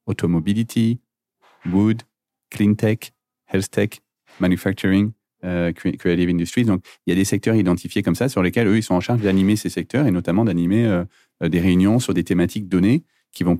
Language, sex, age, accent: French, male, 30-49, French